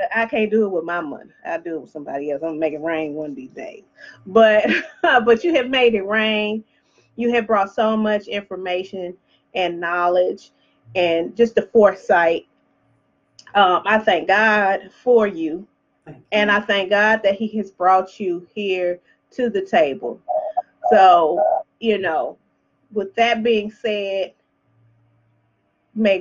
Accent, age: American, 30-49